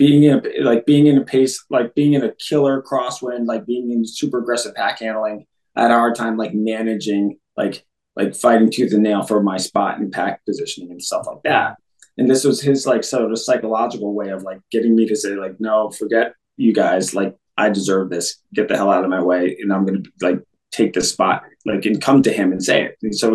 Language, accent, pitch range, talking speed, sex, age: English, American, 105-125 Hz, 235 wpm, male, 20-39